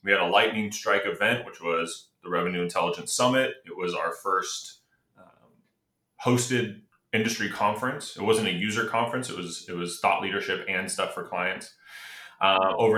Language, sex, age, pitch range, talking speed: English, male, 30-49, 95-110 Hz, 170 wpm